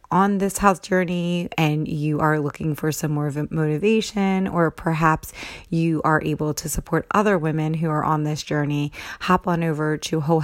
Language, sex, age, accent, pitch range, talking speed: English, female, 30-49, American, 150-170 Hz, 190 wpm